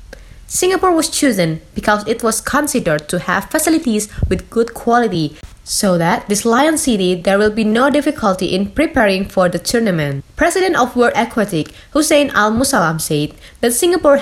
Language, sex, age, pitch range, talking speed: Indonesian, female, 20-39, 175-245 Hz, 160 wpm